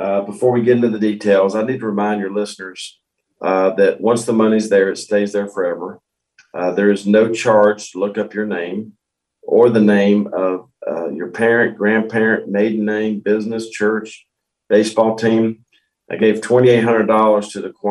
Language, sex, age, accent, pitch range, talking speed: English, male, 50-69, American, 100-115 Hz, 175 wpm